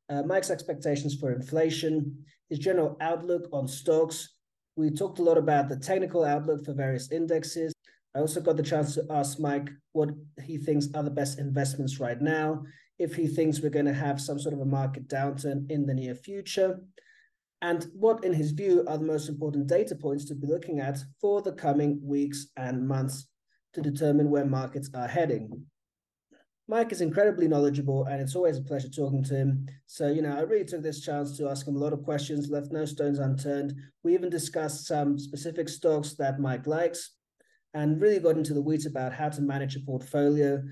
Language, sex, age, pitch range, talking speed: English, male, 30-49, 140-160 Hz, 195 wpm